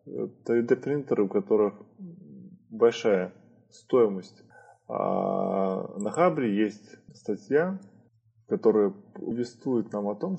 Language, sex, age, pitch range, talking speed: Russian, male, 20-39, 105-125 Hz, 80 wpm